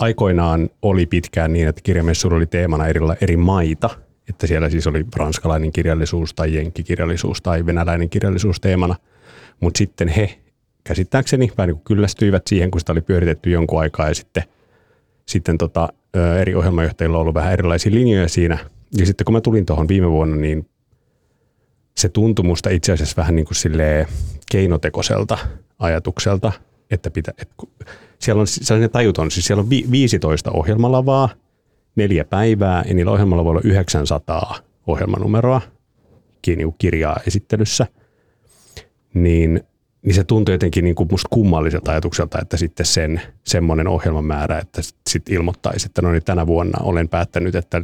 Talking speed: 145 wpm